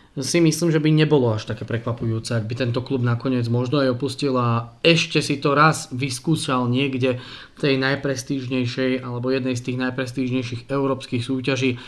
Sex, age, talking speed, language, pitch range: male, 20-39, 165 wpm, Slovak, 130-155 Hz